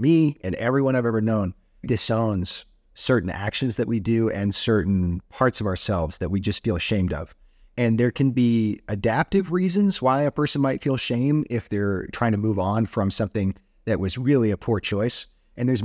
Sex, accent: male, American